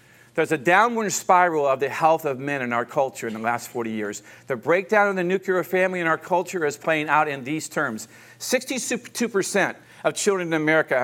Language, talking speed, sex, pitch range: English, 200 wpm, male, 125-180 Hz